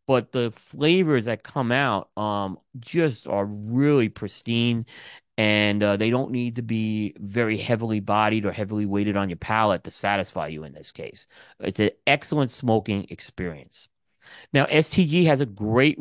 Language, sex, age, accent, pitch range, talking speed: English, male, 30-49, American, 105-140 Hz, 160 wpm